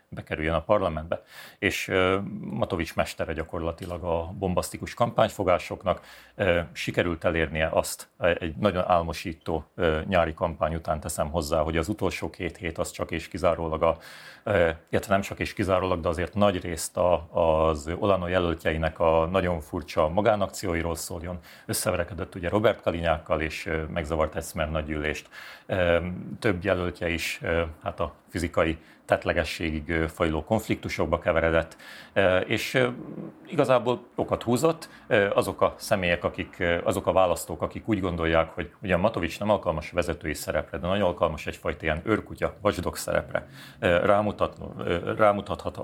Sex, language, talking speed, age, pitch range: male, Hungarian, 135 wpm, 40-59, 80-95 Hz